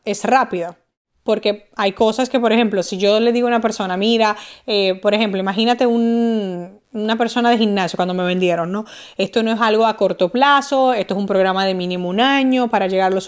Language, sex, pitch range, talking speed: Spanish, female, 195-235 Hz, 215 wpm